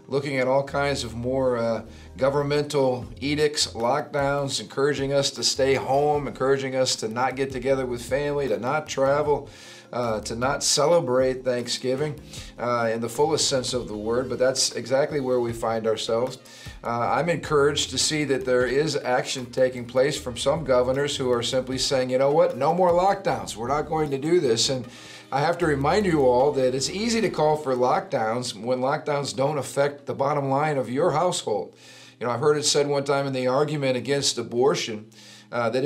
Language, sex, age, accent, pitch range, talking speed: English, male, 50-69, American, 125-145 Hz, 195 wpm